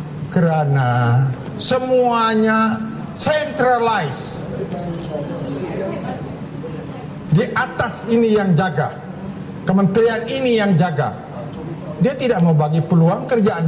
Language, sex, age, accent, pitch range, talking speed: English, male, 50-69, Indonesian, 165-235 Hz, 80 wpm